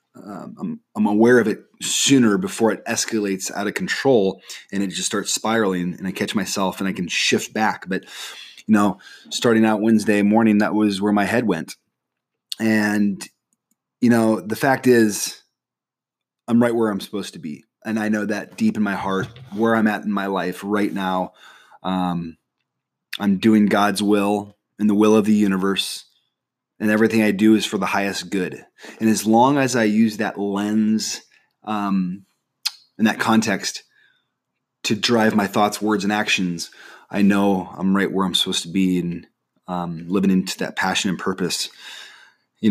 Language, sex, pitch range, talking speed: English, male, 100-110 Hz, 175 wpm